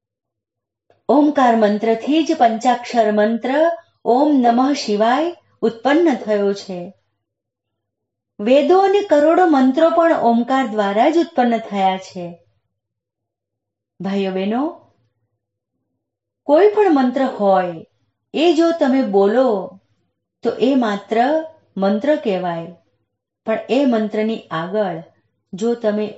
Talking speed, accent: 70 wpm, native